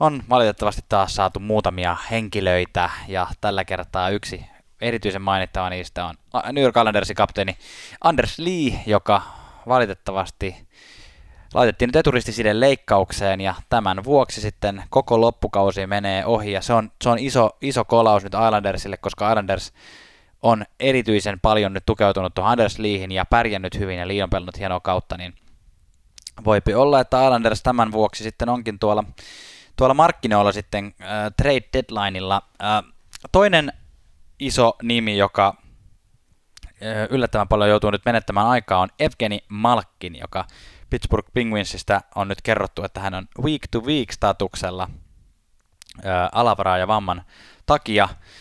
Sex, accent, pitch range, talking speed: male, native, 95-115 Hz, 125 wpm